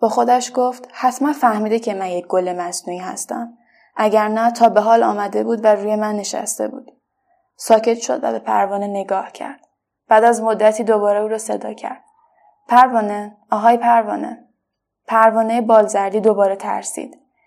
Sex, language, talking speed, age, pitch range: female, Persian, 155 wpm, 10-29, 205-245 Hz